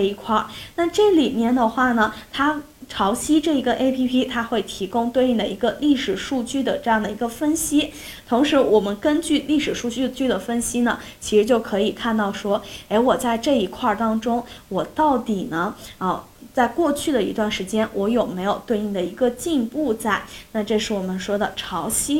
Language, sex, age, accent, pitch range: Chinese, female, 10-29, native, 200-245 Hz